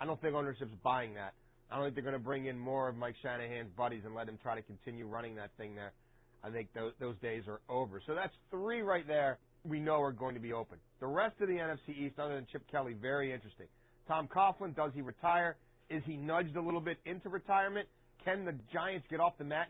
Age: 30-49